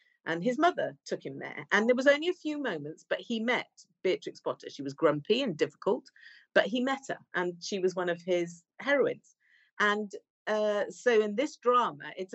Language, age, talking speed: English, 50-69, 200 wpm